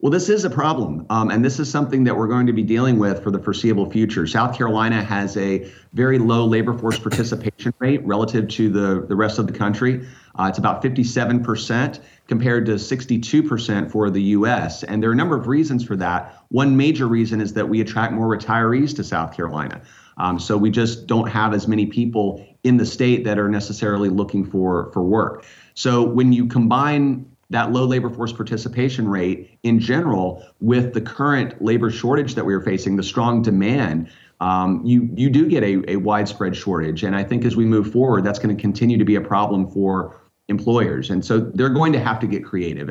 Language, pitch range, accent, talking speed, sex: English, 100-120 Hz, American, 210 wpm, male